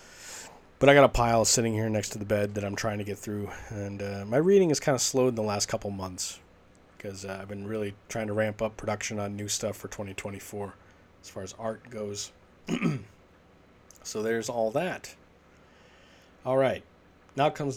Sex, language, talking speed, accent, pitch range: male, English, 200 wpm, American, 100-125 Hz